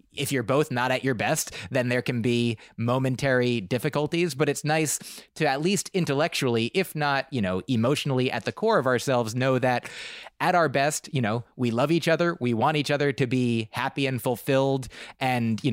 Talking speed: 200 wpm